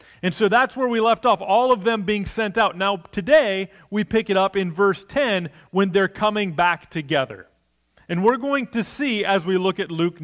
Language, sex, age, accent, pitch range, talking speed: English, male, 30-49, American, 145-210 Hz, 215 wpm